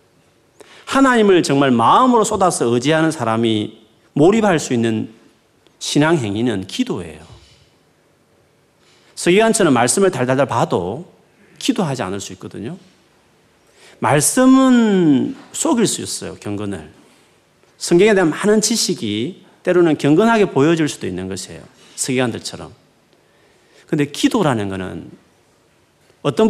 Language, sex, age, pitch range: Korean, male, 40-59, 110-170 Hz